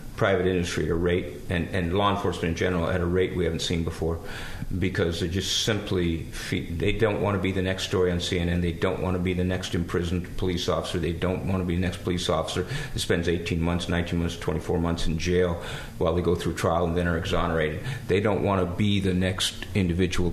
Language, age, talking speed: English, 50-69, 230 wpm